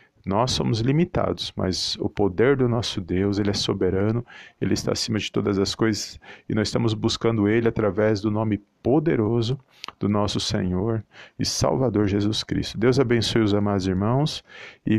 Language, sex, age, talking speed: Portuguese, male, 40-59, 165 wpm